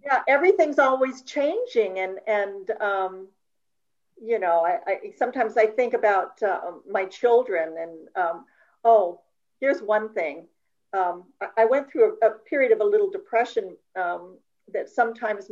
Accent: American